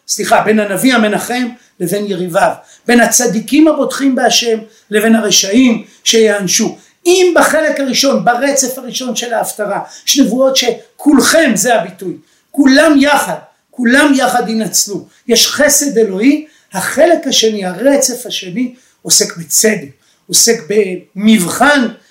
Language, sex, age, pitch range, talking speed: Hebrew, male, 50-69, 210-270 Hz, 110 wpm